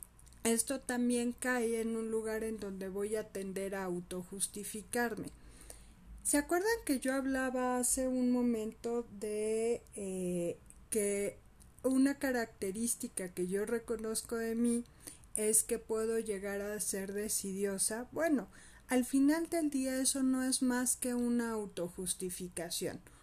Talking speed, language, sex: 130 wpm, Spanish, female